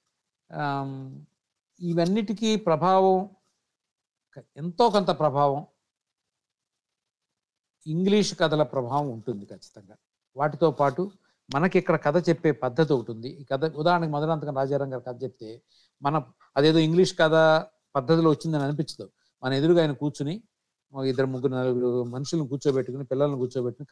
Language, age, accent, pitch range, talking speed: Telugu, 60-79, native, 135-180 Hz, 110 wpm